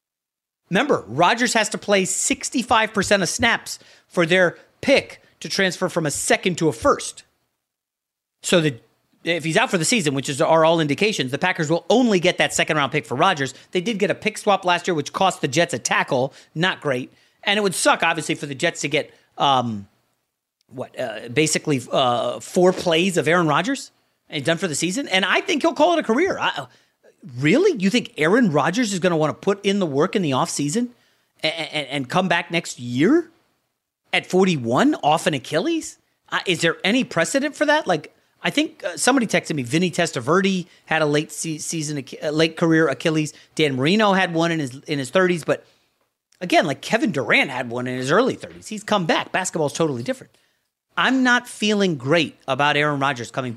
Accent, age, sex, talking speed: American, 30-49, male, 200 wpm